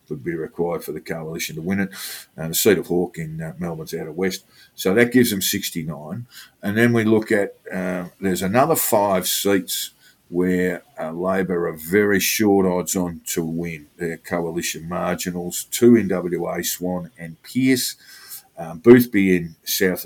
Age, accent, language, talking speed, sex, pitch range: 50-69, Australian, English, 180 wpm, male, 90-105 Hz